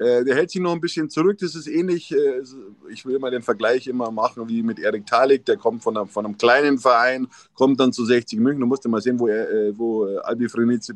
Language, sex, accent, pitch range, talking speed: German, male, German, 120-160 Hz, 235 wpm